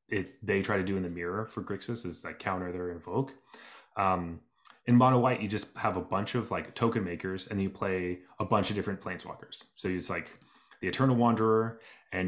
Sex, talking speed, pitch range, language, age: male, 210 wpm, 90-110 Hz, English, 20-39